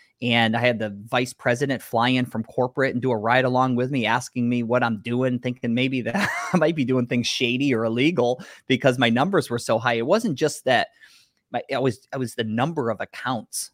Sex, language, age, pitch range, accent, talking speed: male, English, 20-39, 110-135 Hz, American, 225 wpm